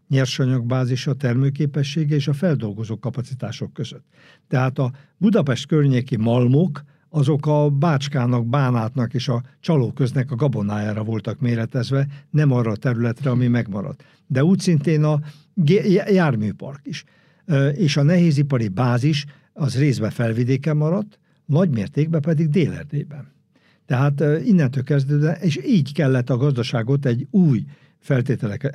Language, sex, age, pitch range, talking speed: Hungarian, male, 60-79, 125-165 Hz, 125 wpm